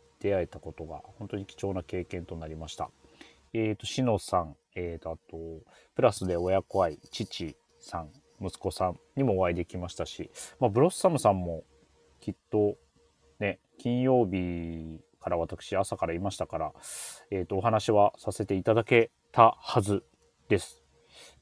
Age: 30-49